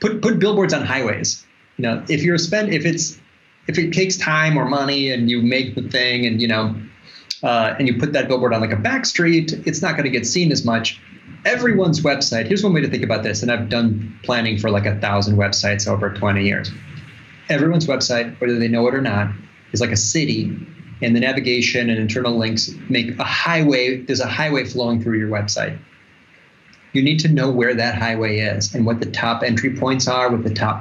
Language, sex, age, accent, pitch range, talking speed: English, male, 30-49, American, 115-140 Hz, 220 wpm